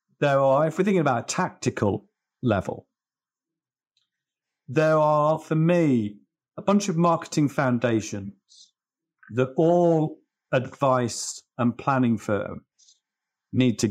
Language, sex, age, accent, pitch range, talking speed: English, male, 50-69, British, 115-150 Hz, 110 wpm